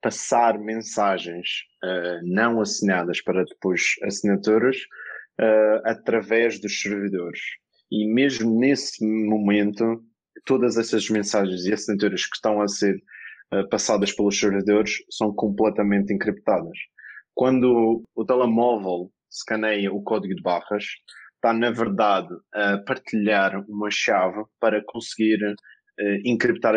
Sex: male